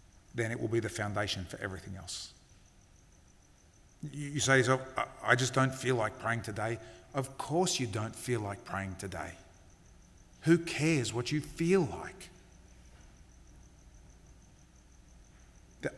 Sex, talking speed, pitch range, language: male, 130 wpm, 95-145 Hz, English